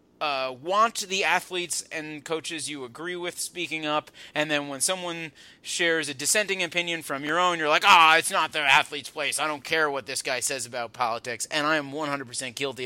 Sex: male